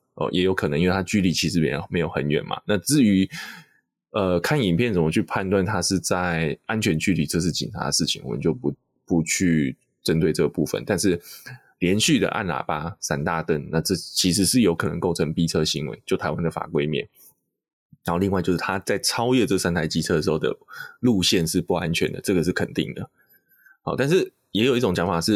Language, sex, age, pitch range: Chinese, male, 20-39, 85-110 Hz